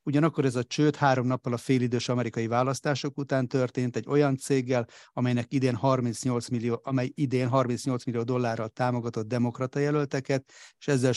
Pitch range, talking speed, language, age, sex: 115-130 Hz, 155 wpm, Hungarian, 30-49, male